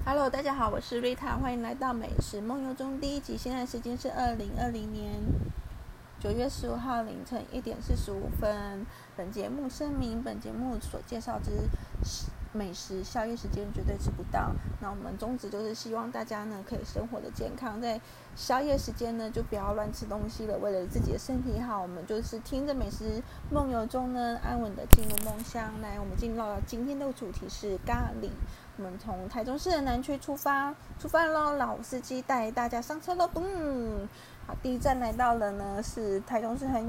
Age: 20-39